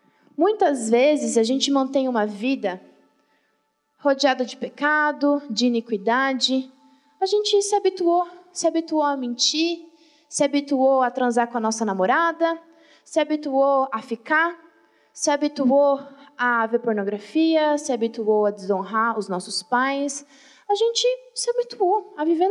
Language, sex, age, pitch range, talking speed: Portuguese, female, 20-39, 270-335 Hz, 135 wpm